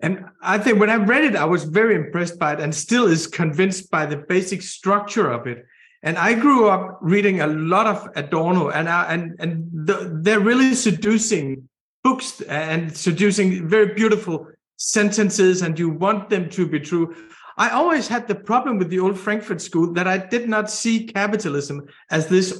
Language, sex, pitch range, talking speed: English, male, 160-205 Hz, 190 wpm